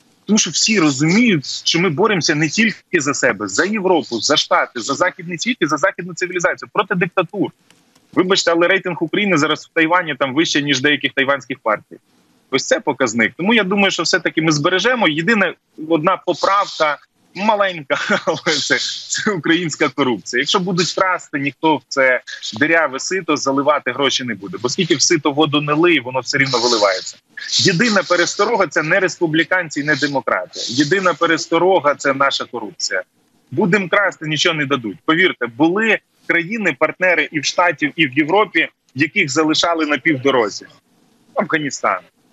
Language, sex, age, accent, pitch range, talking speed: Ukrainian, male, 20-39, native, 145-185 Hz, 160 wpm